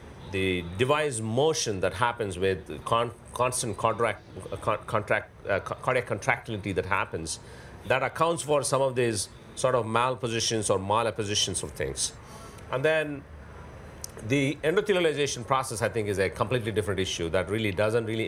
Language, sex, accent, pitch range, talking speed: English, male, Indian, 95-125 Hz, 140 wpm